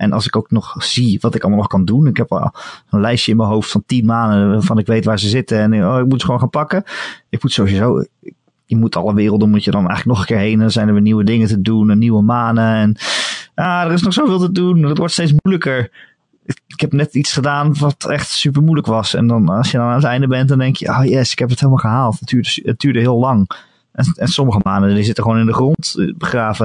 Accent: Dutch